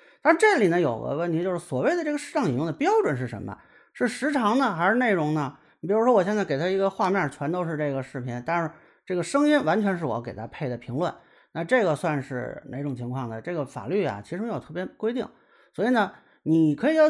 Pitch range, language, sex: 135-215 Hz, Chinese, male